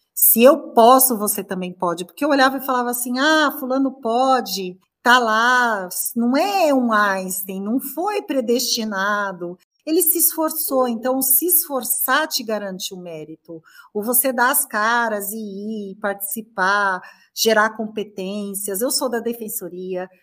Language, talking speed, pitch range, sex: Portuguese, 140 wpm, 185-235 Hz, female